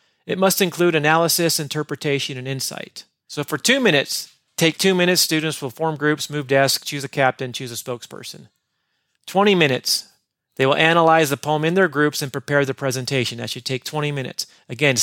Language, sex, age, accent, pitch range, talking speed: English, male, 40-59, American, 130-160 Hz, 185 wpm